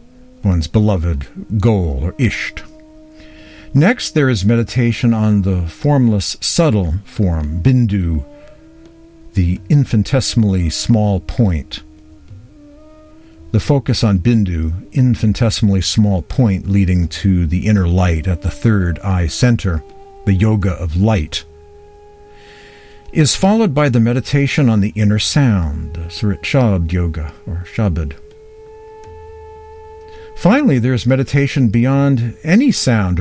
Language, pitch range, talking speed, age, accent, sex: English, 90-140 Hz, 110 wpm, 60-79, American, male